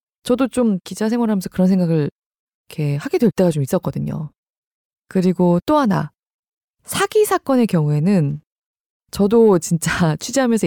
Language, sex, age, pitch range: Korean, female, 20-39, 160-225 Hz